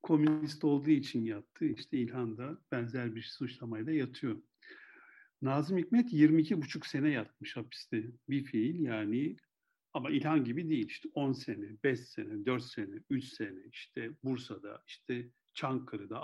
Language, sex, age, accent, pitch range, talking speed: Turkish, male, 60-79, native, 115-155 Hz, 140 wpm